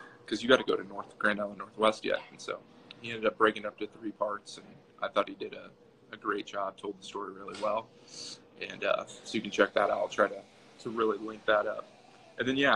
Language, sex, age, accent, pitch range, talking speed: English, male, 20-39, American, 105-115 Hz, 255 wpm